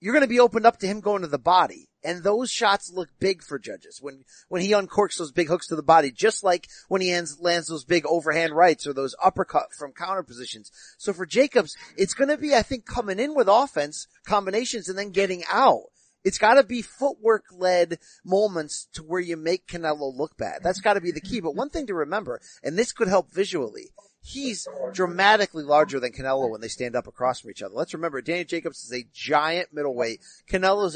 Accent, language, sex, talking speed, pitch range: American, English, male, 220 wpm, 160-230 Hz